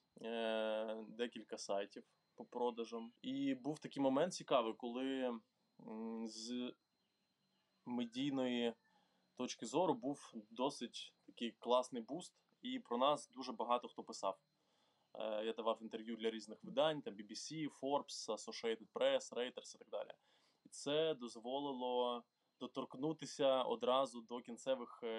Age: 20-39